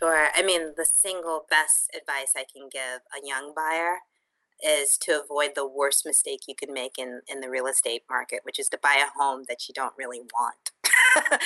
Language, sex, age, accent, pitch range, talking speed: English, female, 30-49, American, 145-180 Hz, 205 wpm